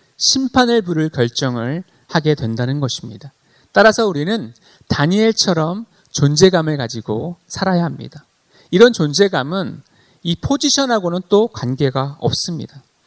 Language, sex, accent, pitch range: Korean, male, native, 135-195 Hz